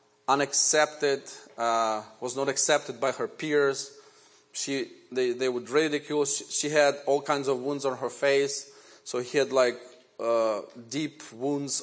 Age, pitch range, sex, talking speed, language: 30-49, 120-140 Hz, male, 150 wpm, English